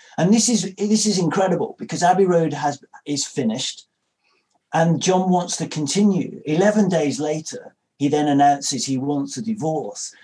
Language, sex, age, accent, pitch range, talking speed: English, male, 40-59, British, 145-195 Hz, 160 wpm